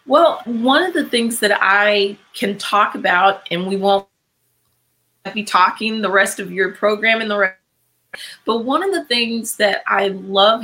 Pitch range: 180-220 Hz